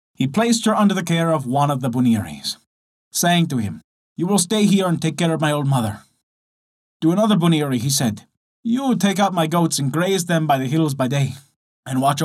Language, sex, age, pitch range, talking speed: English, male, 20-39, 120-180 Hz, 220 wpm